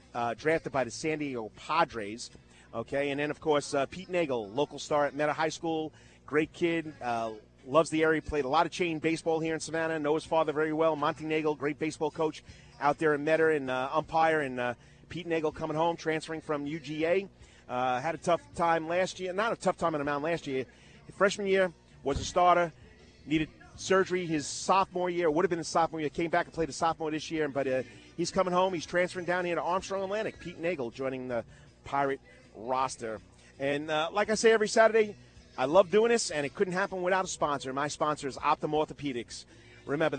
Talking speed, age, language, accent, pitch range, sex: 215 wpm, 30-49, English, American, 140-170 Hz, male